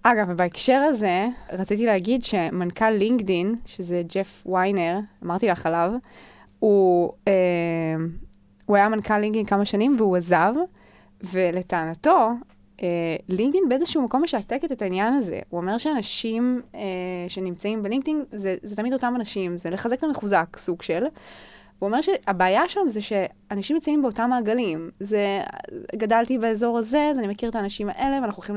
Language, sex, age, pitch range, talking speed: Hebrew, female, 20-39, 185-250 Hz, 145 wpm